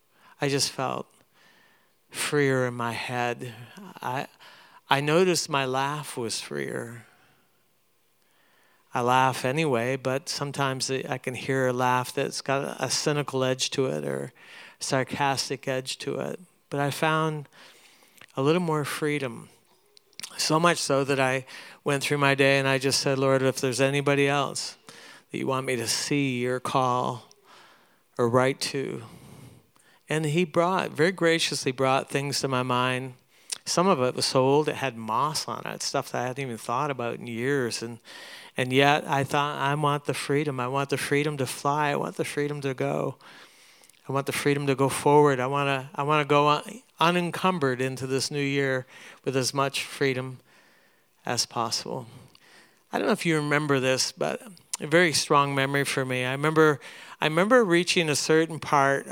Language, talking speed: English, 170 wpm